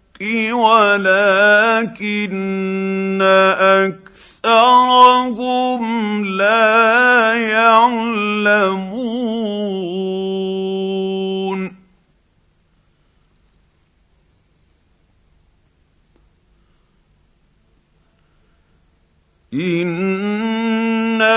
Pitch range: 185-225 Hz